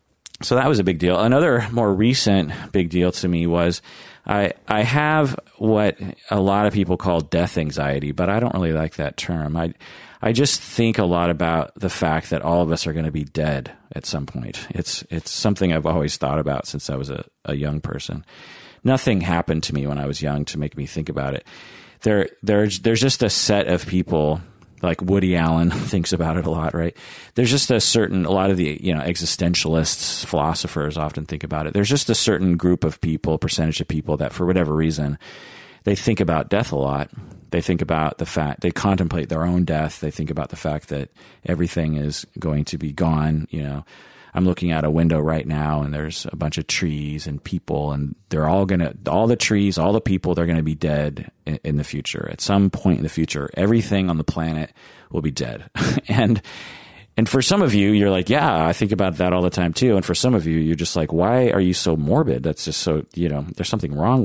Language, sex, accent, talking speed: English, male, American, 230 wpm